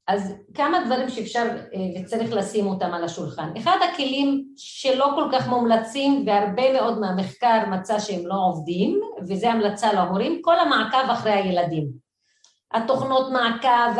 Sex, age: female, 40-59